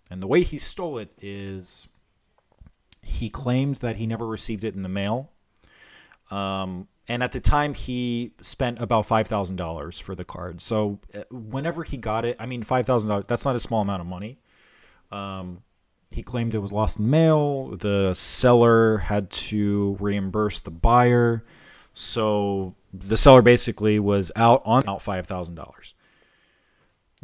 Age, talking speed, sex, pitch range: 30-49, 150 wpm, male, 95-120 Hz